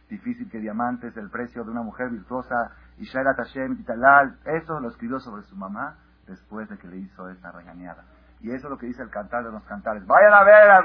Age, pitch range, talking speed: 50-69, 105-160 Hz, 225 wpm